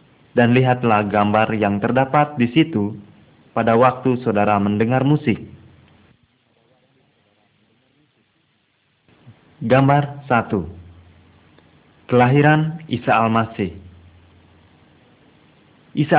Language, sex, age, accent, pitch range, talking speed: Indonesian, male, 30-49, native, 105-135 Hz, 65 wpm